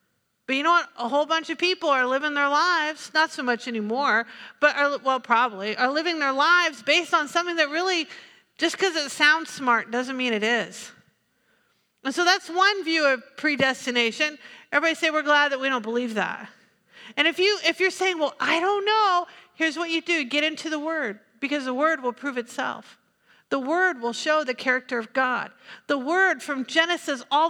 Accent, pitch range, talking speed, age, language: American, 255-330 Hz, 200 wpm, 50-69, English